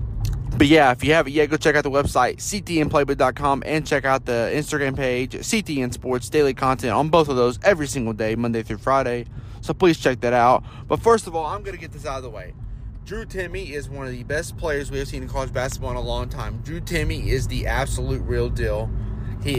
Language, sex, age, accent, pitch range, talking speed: English, male, 30-49, American, 105-135 Hz, 235 wpm